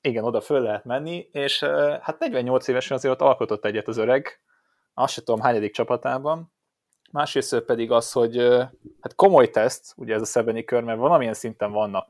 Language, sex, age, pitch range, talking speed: Hungarian, male, 20-39, 105-125 Hz, 175 wpm